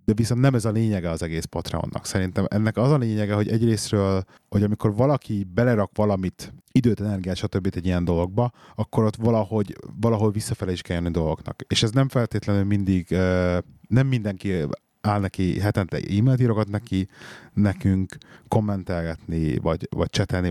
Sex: male